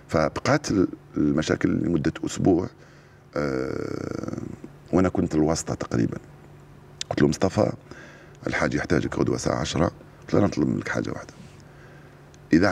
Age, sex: 50-69, male